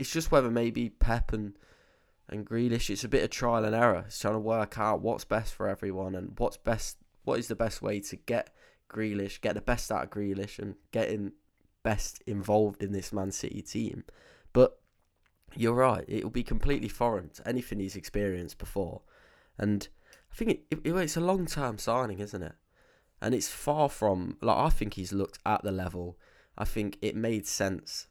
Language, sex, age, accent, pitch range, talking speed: English, male, 10-29, British, 95-115 Hz, 200 wpm